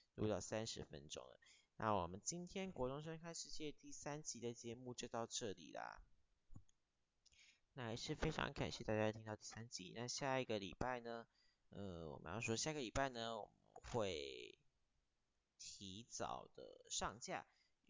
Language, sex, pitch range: Chinese, male, 100-135 Hz